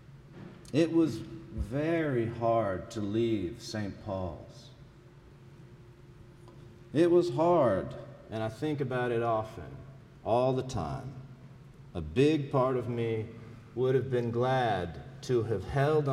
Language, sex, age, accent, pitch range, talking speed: English, male, 50-69, American, 120-145 Hz, 120 wpm